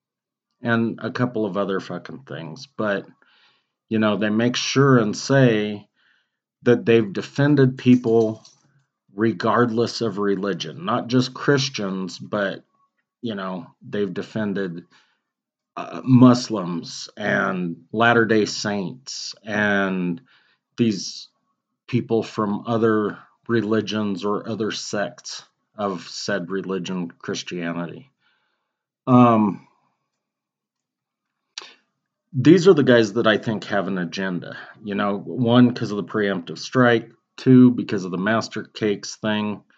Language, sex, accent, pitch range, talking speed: English, male, American, 100-115 Hz, 110 wpm